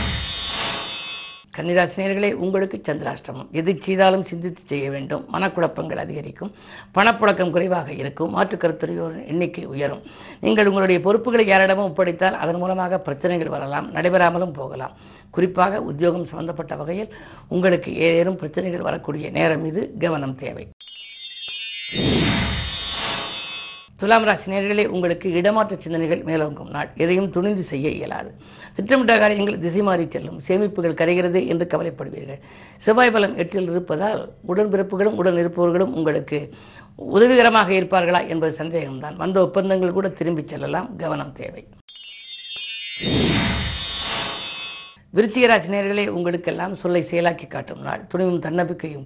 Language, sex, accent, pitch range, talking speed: Tamil, female, native, 160-195 Hz, 105 wpm